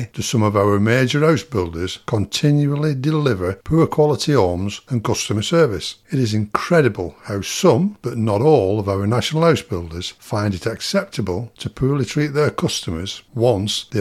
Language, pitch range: English, 100-140 Hz